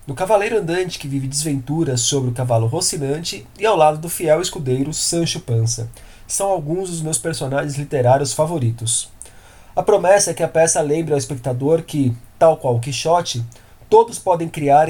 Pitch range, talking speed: 125-170 Hz, 170 wpm